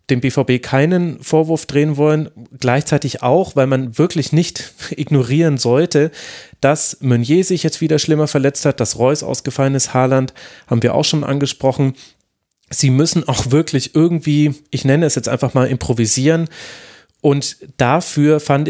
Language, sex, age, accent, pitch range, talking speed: German, male, 30-49, German, 125-155 Hz, 150 wpm